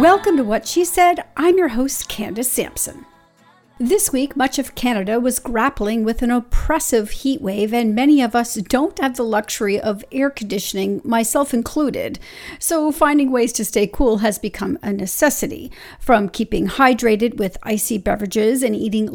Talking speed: 165 wpm